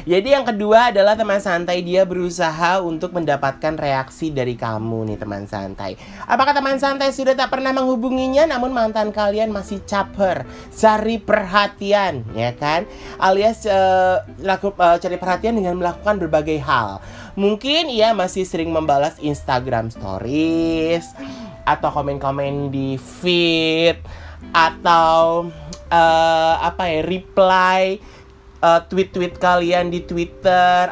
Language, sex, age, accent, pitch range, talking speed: Indonesian, male, 30-49, native, 150-200 Hz, 125 wpm